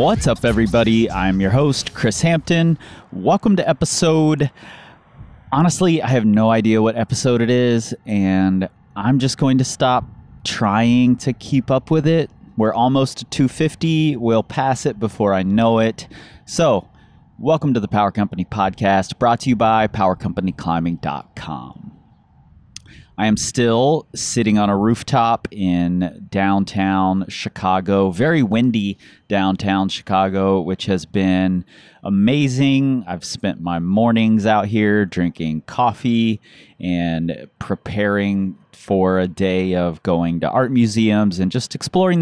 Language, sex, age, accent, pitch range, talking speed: English, male, 30-49, American, 95-125 Hz, 130 wpm